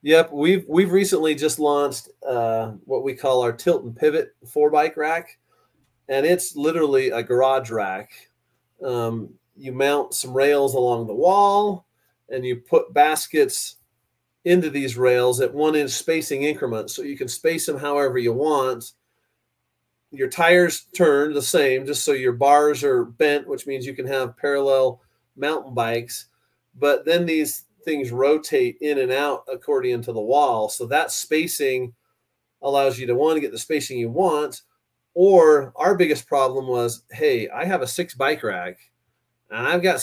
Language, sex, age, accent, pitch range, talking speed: English, male, 30-49, American, 130-170 Hz, 165 wpm